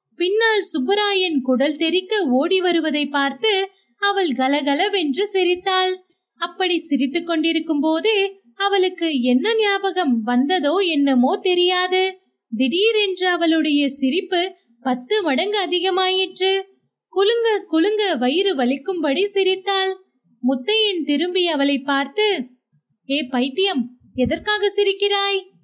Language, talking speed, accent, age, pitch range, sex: Tamil, 60 wpm, native, 20-39, 260-380 Hz, female